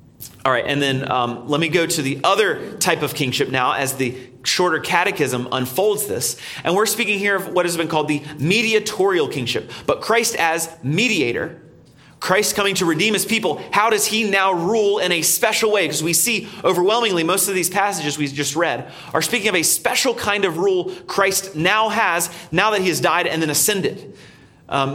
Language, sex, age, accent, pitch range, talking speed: English, male, 30-49, American, 145-210 Hz, 200 wpm